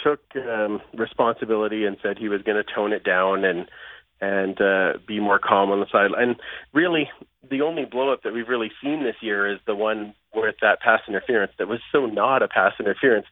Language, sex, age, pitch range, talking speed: English, male, 30-49, 100-125 Hz, 205 wpm